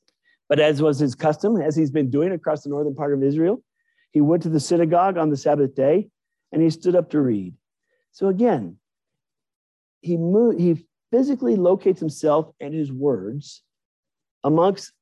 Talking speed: 165 wpm